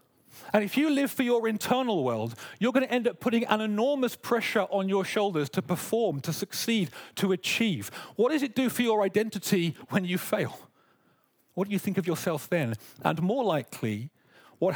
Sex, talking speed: male, 190 wpm